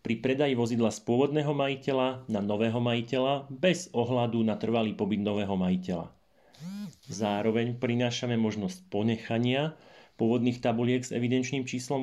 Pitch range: 110-130 Hz